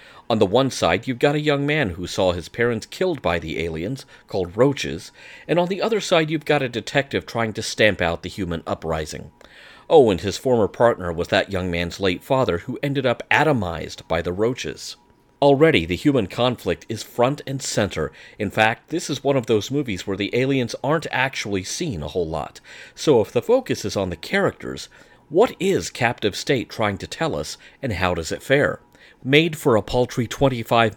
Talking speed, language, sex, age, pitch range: 200 wpm, English, male, 40-59, 95-140 Hz